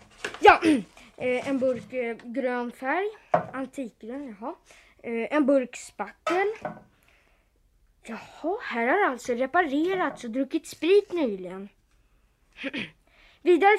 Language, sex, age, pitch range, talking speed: Swedish, female, 20-39, 235-355 Hz, 95 wpm